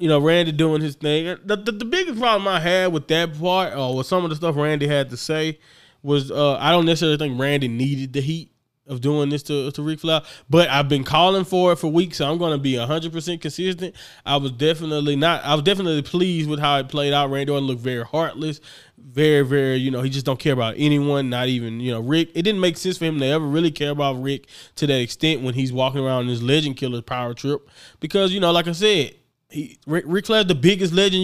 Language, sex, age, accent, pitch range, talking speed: English, male, 20-39, American, 135-165 Hz, 250 wpm